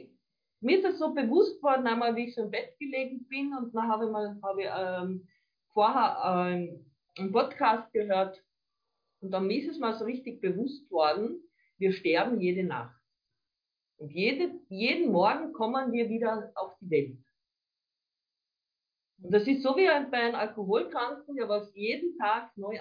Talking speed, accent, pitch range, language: 170 wpm, German, 195-270 Hz, German